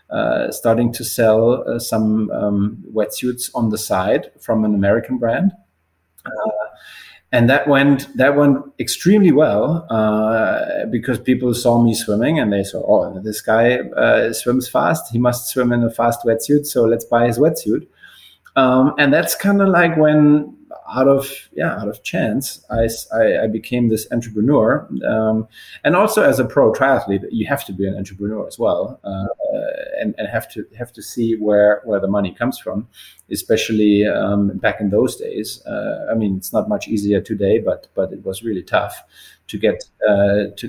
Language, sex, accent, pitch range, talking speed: English, male, German, 110-130 Hz, 180 wpm